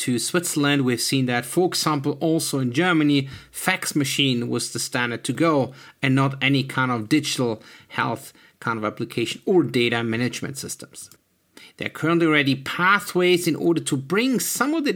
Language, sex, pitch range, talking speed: English, male, 140-180 Hz, 175 wpm